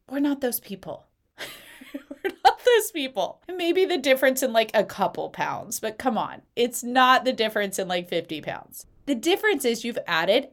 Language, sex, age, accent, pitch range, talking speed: English, female, 30-49, American, 200-290 Hz, 180 wpm